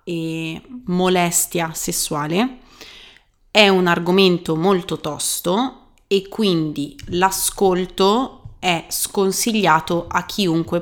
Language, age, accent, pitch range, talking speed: Italian, 30-49, native, 165-195 Hz, 80 wpm